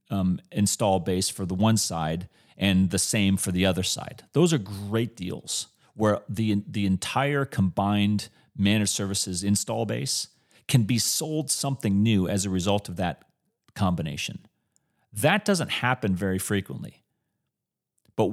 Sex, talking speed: male, 145 wpm